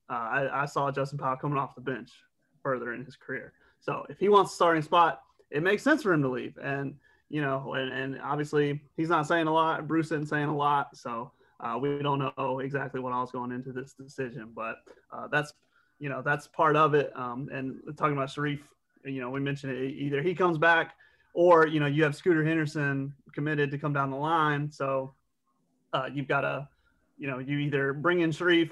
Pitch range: 135-155 Hz